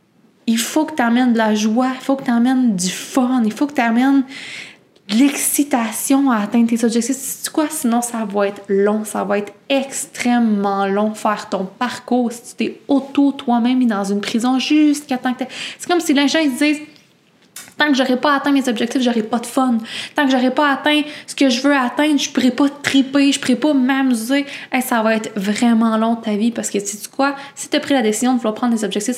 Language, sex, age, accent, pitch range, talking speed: English, female, 20-39, Canadian, 210-260 Hz, 230 wpm